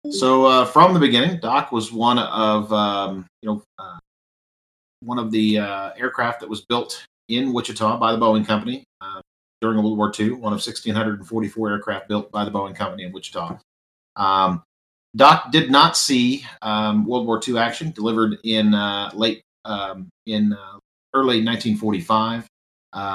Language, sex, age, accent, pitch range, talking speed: English, male, 40-59, American, 100-110 Hz, 160 wpm